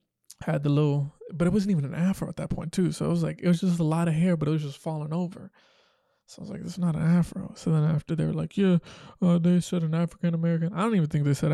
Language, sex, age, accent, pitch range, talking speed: English, male, 20-39, American, 150-180 Hz, 290 wpm